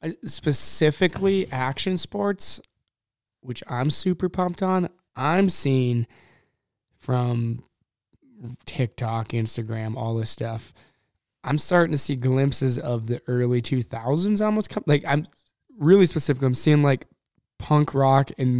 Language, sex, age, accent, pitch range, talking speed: English, male, 20-39, American, 120-140 Hz, 115 wpm